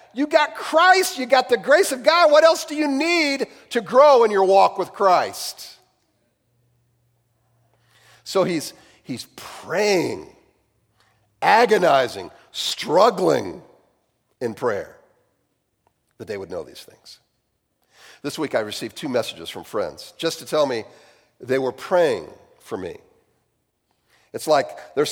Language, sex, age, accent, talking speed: English, male, 50-69, American, 130 wpm